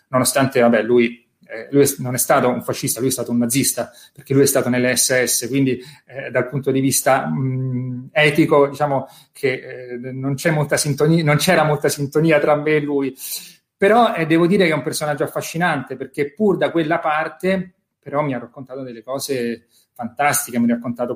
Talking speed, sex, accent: 190 wpm, male, native